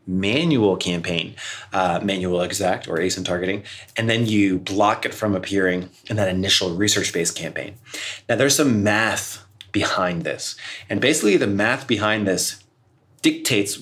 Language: English